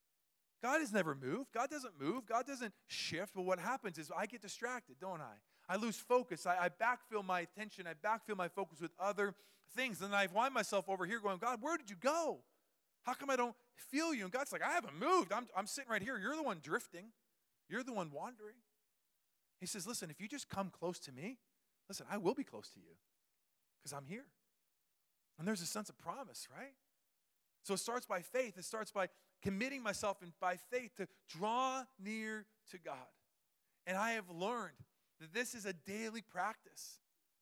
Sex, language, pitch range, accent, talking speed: male, English, 190-250 Hz, American, 205 wpm